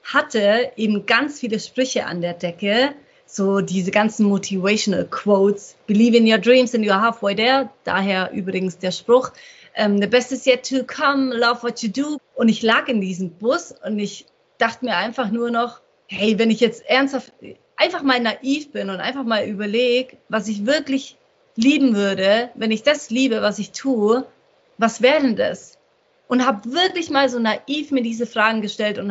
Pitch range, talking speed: 210-260 Hz, 180 wpm